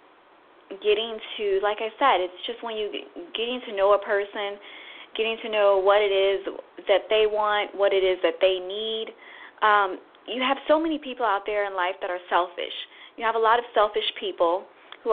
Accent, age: American, 20-39